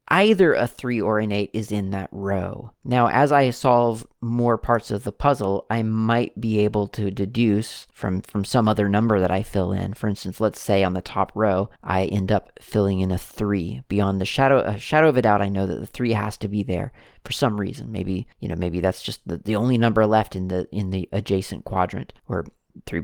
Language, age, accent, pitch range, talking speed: English, 30-49, American, 95-115 Hz, 230 wpm